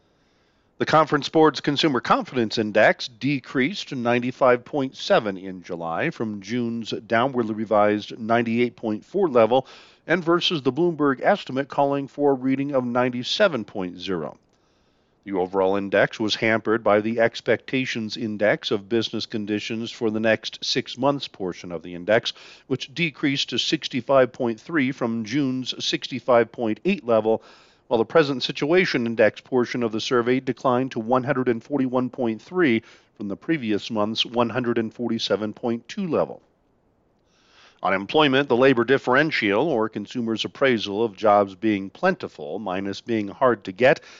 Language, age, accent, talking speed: English, 50-69, American, 125 wpm